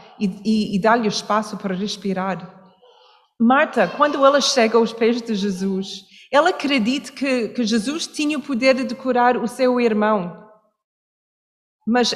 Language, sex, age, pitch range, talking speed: Portuguese, female, 40-59, 210-270 Hz, 150 wpm